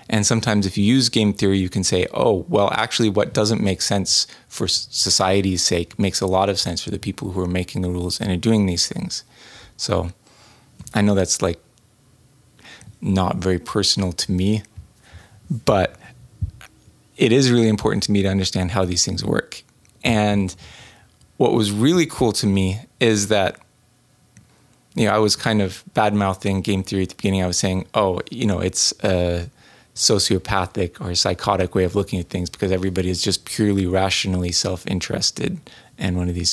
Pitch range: 95-110 Hz